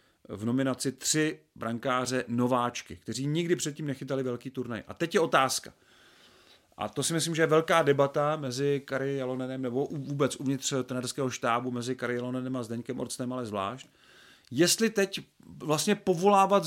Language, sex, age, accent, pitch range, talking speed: Czech, male, 40-59, native, 125-165 Hz, 155 wpm